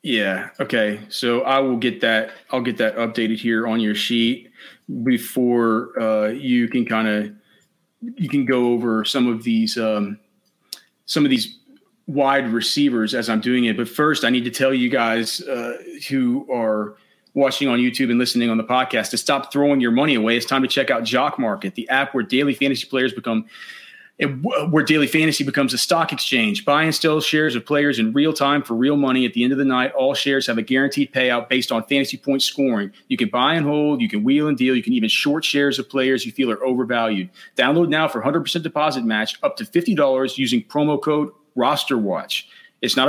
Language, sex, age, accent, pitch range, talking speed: English, male, 30-49, American, 120-155 Hz, 210 wpm